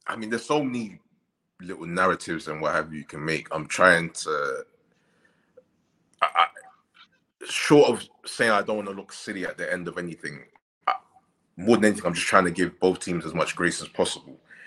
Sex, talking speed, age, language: male, 185 wpm, 20-39, English